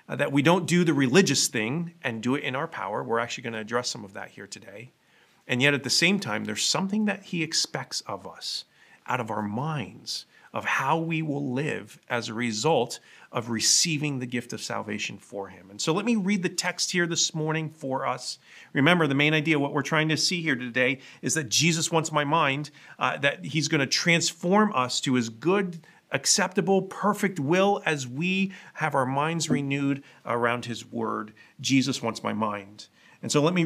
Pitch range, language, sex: 120-165 Hz, English, male